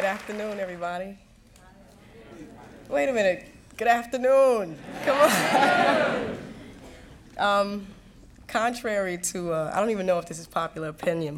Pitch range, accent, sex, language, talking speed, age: 165-220 Hz, American, female, English, 115 wpm, 20-39